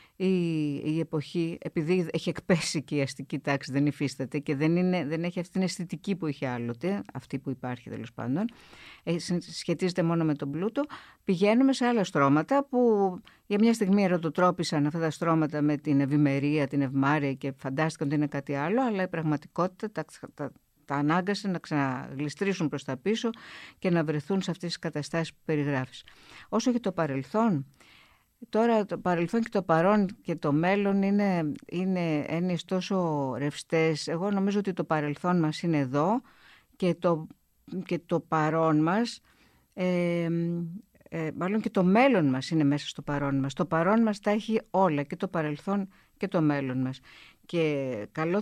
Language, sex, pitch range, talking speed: Greek, female, 150-195 Hz, 170 wpm